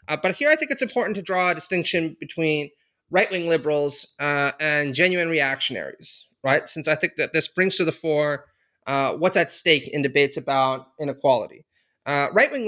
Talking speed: 180 wpm